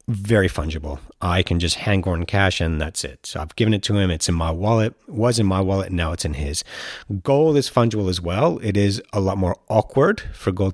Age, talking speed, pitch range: 30-49, 235 wpm, 90-115 Hz